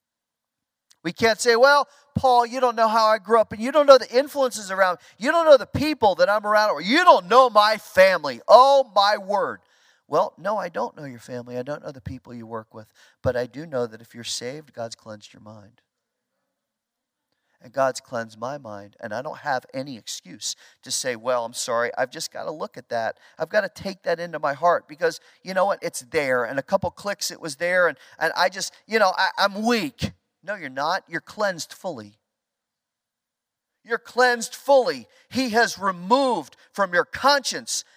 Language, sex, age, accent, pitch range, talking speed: English, male, 40-59, American, 160-255 Hz, 210 wpm